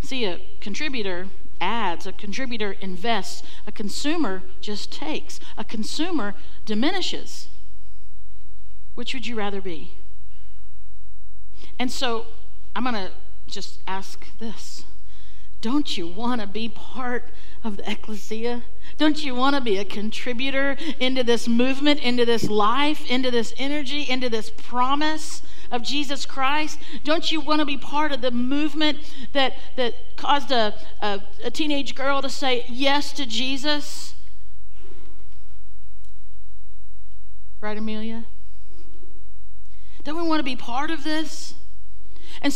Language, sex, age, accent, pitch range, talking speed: English, female, 50-69, American, 170-280 Hz, 120 wpm